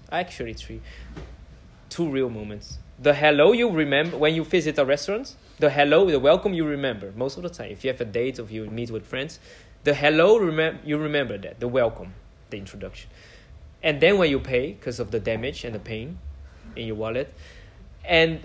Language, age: English, 20-39